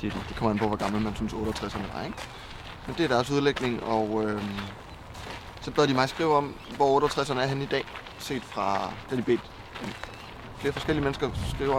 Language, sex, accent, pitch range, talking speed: Danish, male, native, 110-130 Hz, 200 wpm